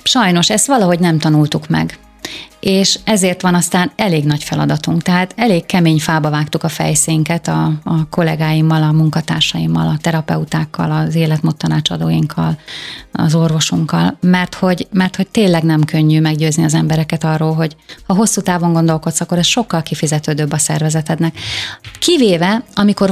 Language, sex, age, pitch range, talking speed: Hungarian, female, 30-49, 155-190 Hz, 140 wpm